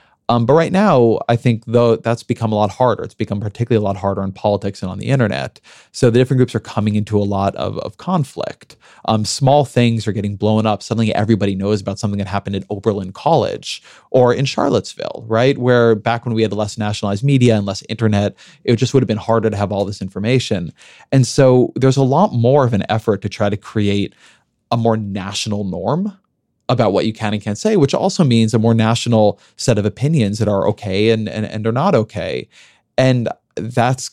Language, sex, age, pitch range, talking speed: English, male, 30-49, 100-120 Hz, 215 wpm